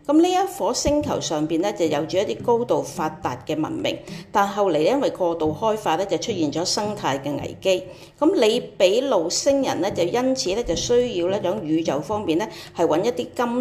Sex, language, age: female, Chinese, 40-59